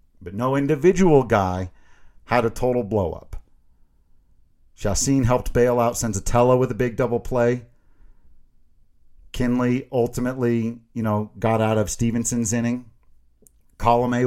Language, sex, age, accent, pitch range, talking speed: English, male, 40-59, American, 90-125 Hz, 115 wpm